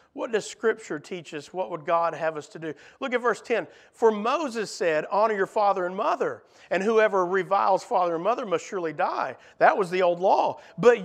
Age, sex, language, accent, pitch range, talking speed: 50-69, male, English, American, 175-230 Hz, 210 wpm